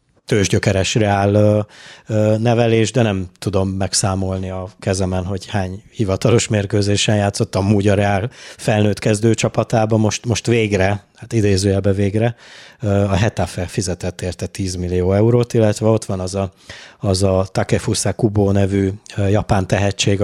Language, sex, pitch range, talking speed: Hungarian, male, 95-110 Hz, 125 wpm